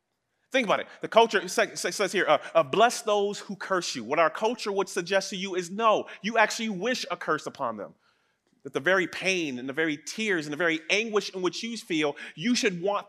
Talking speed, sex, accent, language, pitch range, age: 225 wpm, male, American, English, 145-185 Hz, 30-49